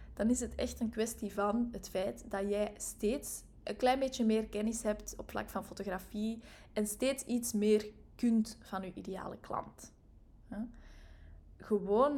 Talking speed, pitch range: 160 wpm, 195-220 Hz